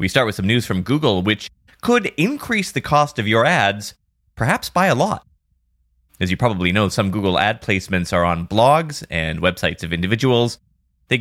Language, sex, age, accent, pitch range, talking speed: English, male, 30-49, American, 90-125 Hz, 185 wpm